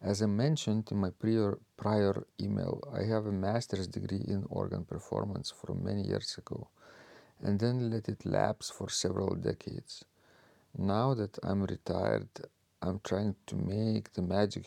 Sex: male